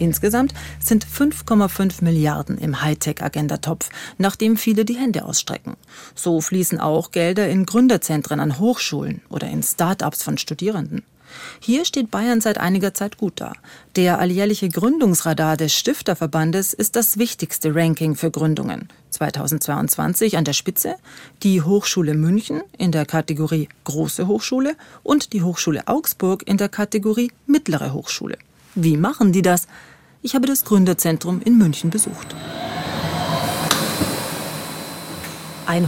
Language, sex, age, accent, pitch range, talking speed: German, female, 40-59, German, 160-220 Hz, 125 wpm